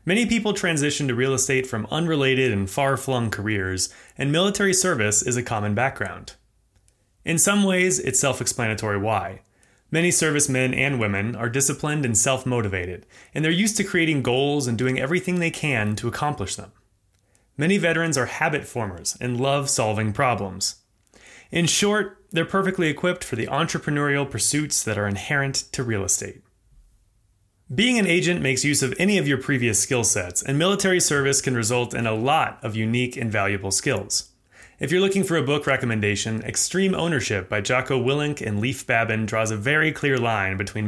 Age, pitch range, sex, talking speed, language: 30-49, 105-150 Hz, male, 170 wpm, English